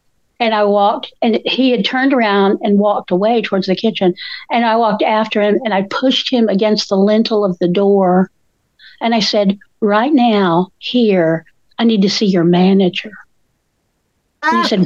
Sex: female